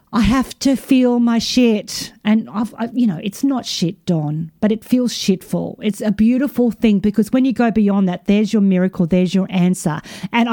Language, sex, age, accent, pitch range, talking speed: English, female, 40-59, Australian, 205-245 Hz, 205 wpm